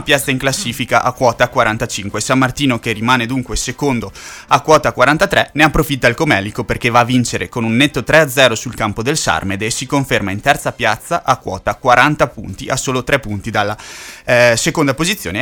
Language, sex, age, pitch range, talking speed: Italian, male, 20-39, 115-140 Hz, 200 wpm